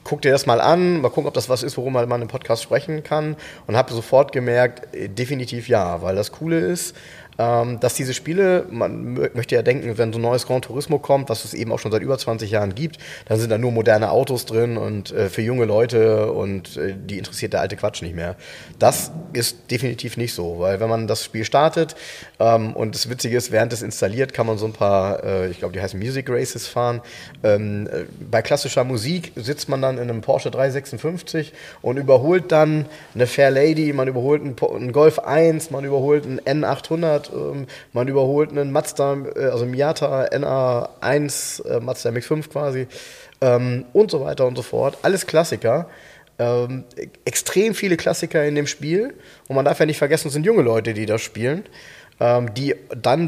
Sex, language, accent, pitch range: male, German, German, 115-150 Hz